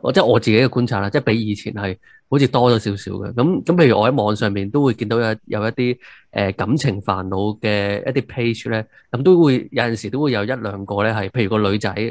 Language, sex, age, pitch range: Chinese, male, 20-39, 105-135 Hz